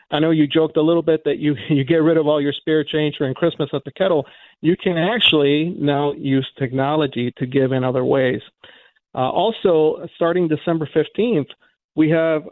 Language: English